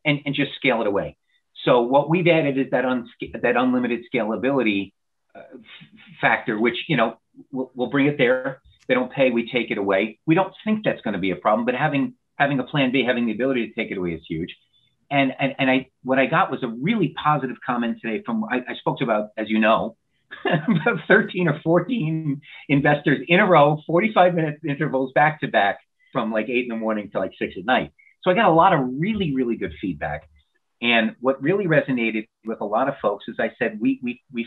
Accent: American